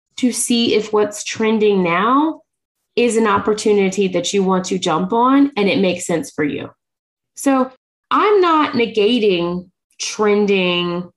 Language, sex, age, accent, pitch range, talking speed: English, female, 20-39, American, 195-260 Hz, 140 wpm